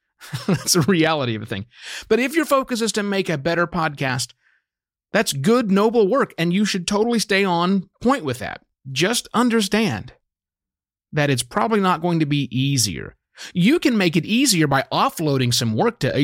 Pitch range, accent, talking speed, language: 120-180 Hz, American, 180 wpm, English